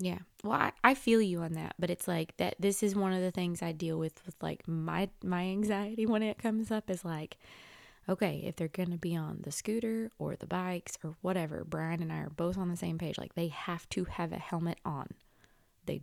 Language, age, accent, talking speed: English, 20-39, American, 240 wpm